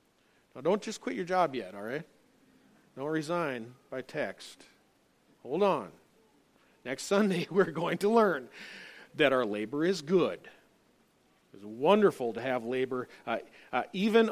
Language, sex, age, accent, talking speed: English, male, 40-59, American, 145 wpm